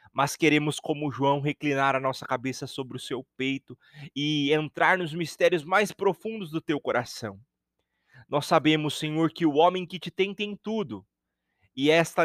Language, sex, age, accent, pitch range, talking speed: Portuguese, male, 30-49, Brazilian, 145-195 Hz, 165 wpm